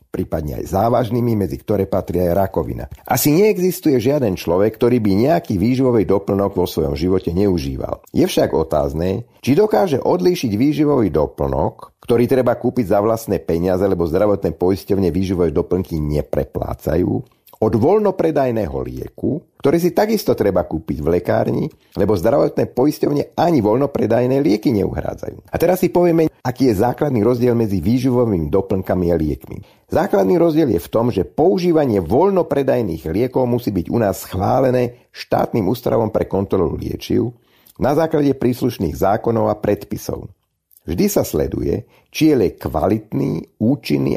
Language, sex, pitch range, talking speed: Slovak, male, 95-140 Hz, 140 wpm